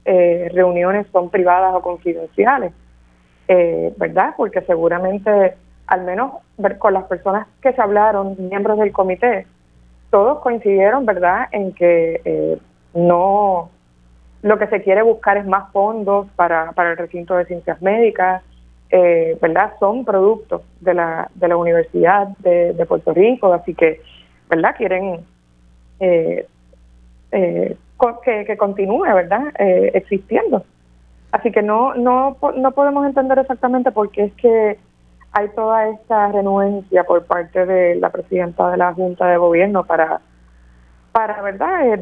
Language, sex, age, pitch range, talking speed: Spanish, female, 30-49, 175-215 Hz, 140 wpm